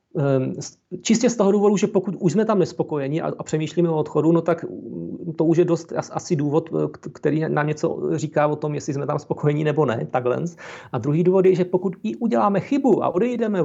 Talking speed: 200 wpm